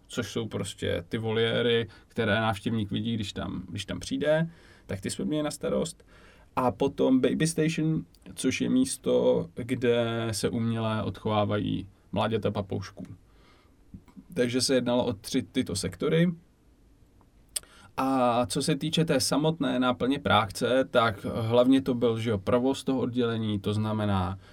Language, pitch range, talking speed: Czech, 100-125 Hz, 135 wpm